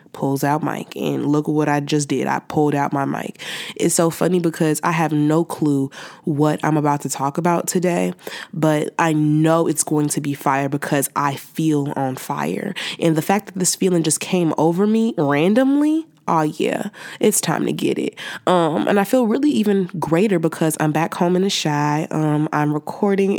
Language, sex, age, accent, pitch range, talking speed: English, female, 20-39, American, 150-185 Hz, 200 wpm